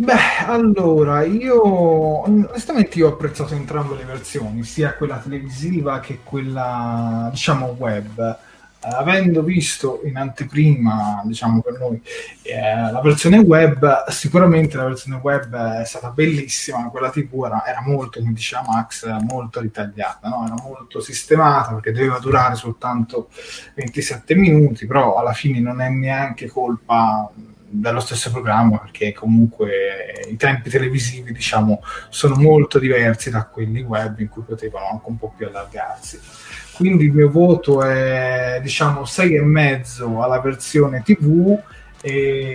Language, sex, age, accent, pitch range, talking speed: Italian, male, 20-39, native, 115-150 Hz, 140 wpm